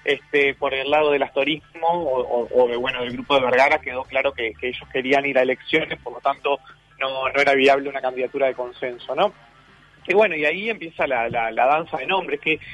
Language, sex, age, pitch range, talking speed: Spanish, male, 30-49, 130-165 Hz, 220 wpm